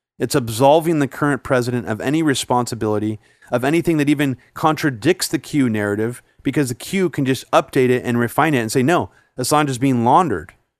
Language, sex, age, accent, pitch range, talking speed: English, male, 30-49, American, 120-150 Hz, 185 wpm